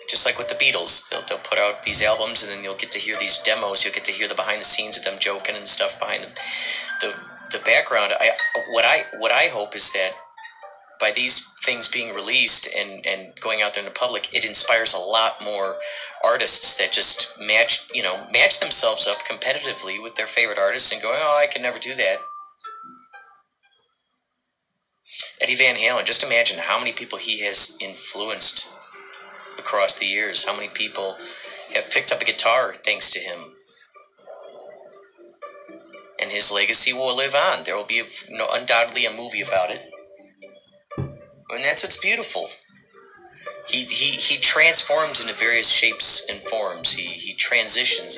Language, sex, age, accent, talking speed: English, male, 30-49, American, 180 wpm